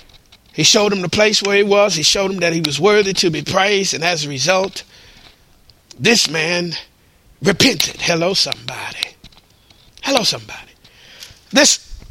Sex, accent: male, American